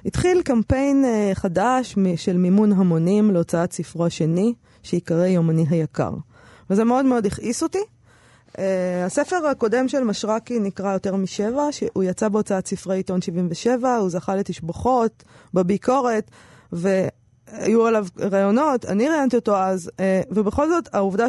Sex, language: female, Hebrew